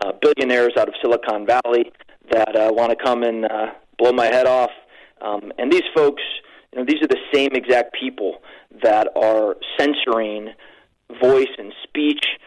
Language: English